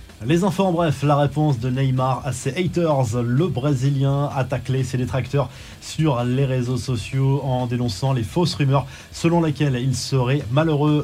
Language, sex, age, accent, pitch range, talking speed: French, male, 20-39, French, 125-150 Hz, 170 wpm